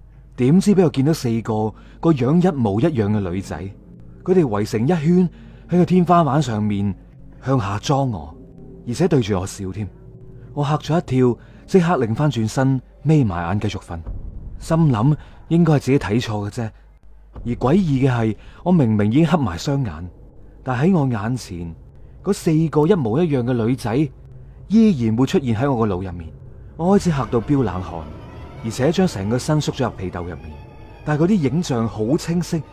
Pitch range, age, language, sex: 100-150 Hz, 30-49, Chinese, male